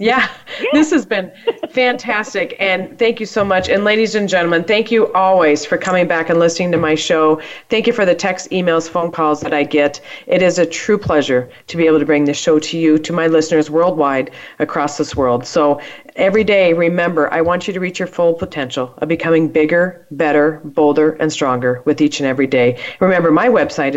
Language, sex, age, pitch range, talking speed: English, female, 40-59, 145-185 Hz, 210 wpm